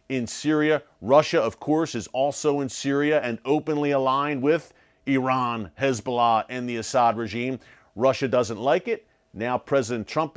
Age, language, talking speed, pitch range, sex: 40-59, English, 150 wpm, 120-150 Hz, male